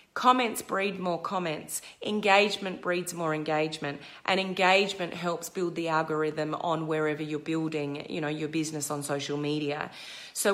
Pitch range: 160-210 Hz